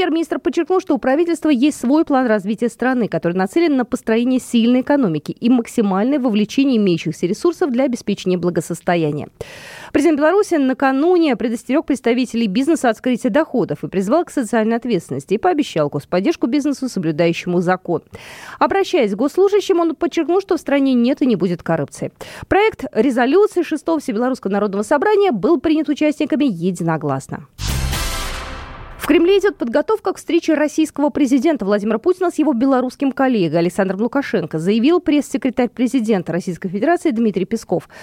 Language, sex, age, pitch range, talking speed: Russian, female, 20-39, 195-315 Hz, 140 wpm